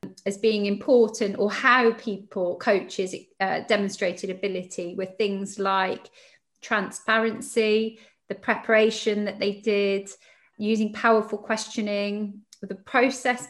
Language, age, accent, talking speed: English, 30-49, British, 105 wpm